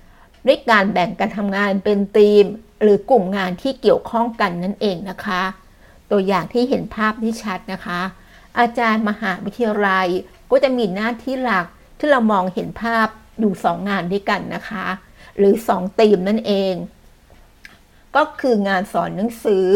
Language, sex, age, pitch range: Thai, female, 60-79, 190-230 Hz